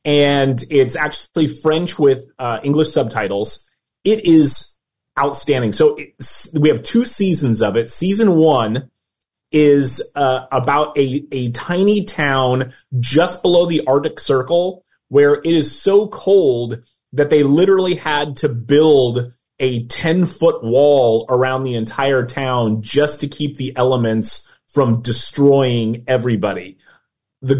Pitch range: 120-150 Hz